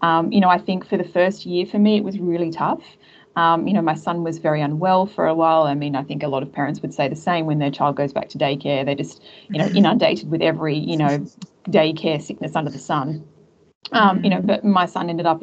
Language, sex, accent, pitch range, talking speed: English, female, Australian, 165-195 Hz, 260 wpm